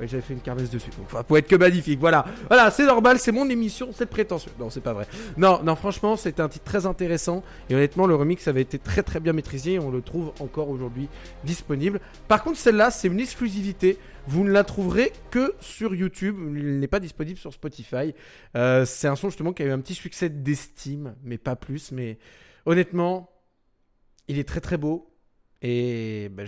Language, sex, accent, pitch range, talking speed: French, male, French, 125-180 Hz, 205 wpm